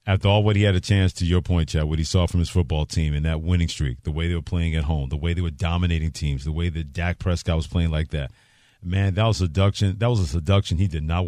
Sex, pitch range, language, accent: male, 95-125 Hz, English, American